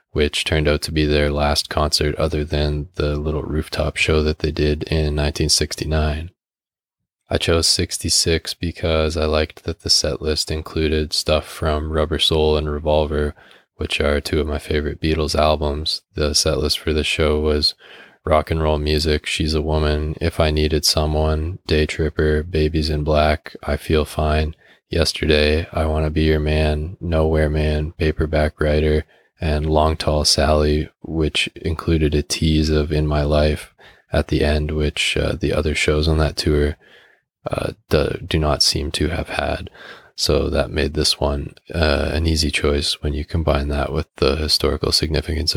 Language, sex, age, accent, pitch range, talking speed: English, male, 20-39, American, 75-80 Hz, 170 wpm